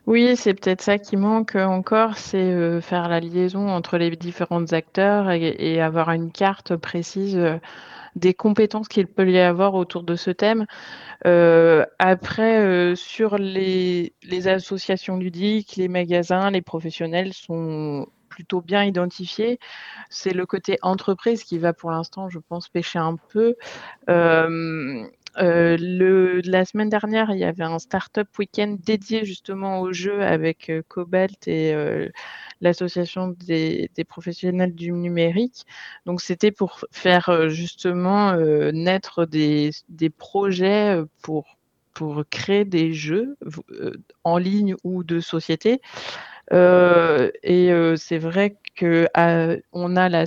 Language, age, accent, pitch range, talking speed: French, 20-39, French, 165-195 Hz, 140 wpm